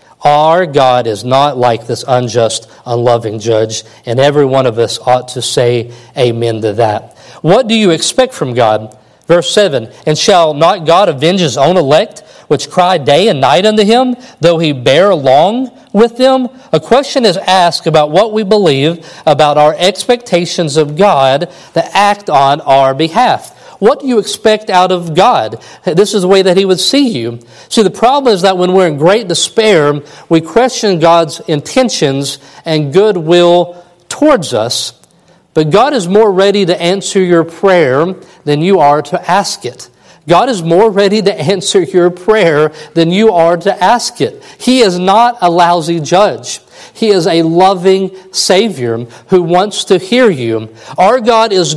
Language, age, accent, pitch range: English, 50-69, American, 145-200 Hz